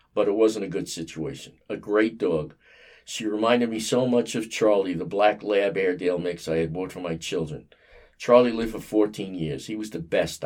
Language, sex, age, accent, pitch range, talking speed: English, male, 50-69, American, 95-115 Hz, 205 wpm